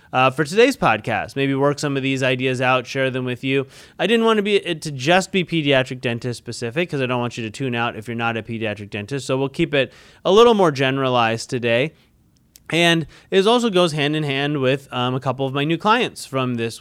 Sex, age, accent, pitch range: male, 30-49, American, 120-145 Hz